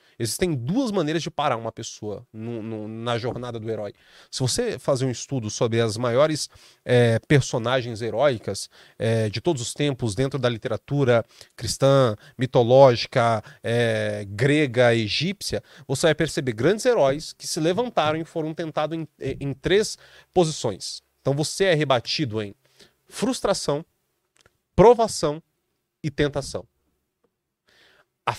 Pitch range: 120-165 Hz